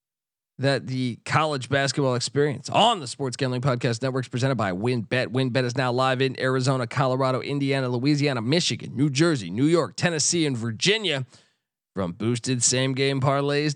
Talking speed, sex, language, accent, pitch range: 160 wpm, male, English, American, 125-155 Hz